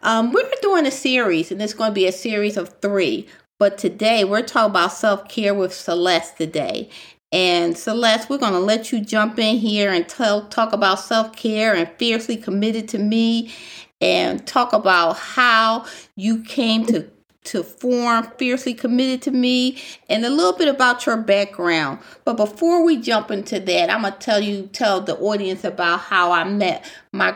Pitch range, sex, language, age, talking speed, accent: 190-245 Hz, female, English, 40-59, 180 wpm, American